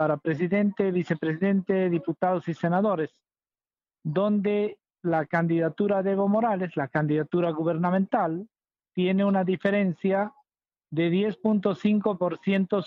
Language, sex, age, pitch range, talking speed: Spanish, male, 50-69, 165-210 Hz, 95 wpm